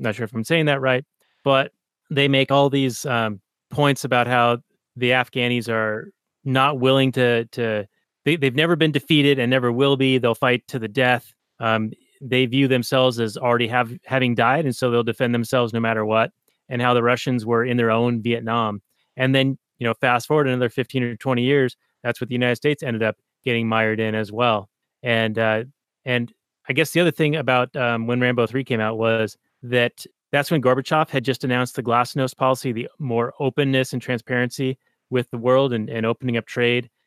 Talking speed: 200 wpm